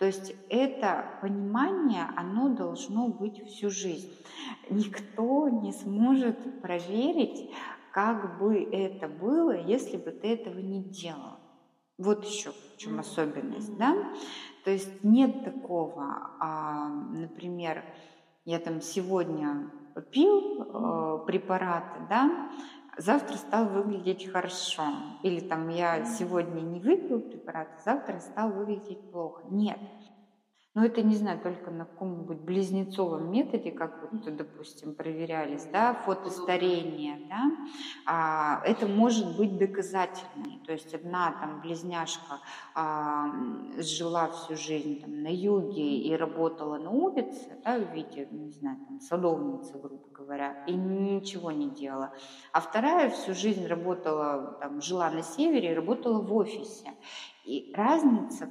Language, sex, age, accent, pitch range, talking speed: Russian, female, 20-39, native, 160-220 Hz, 125 wpm